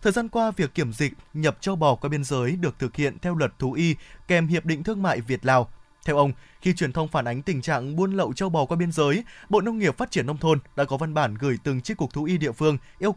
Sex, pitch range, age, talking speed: male, 145-195 Hz, 20-39, 280 wpm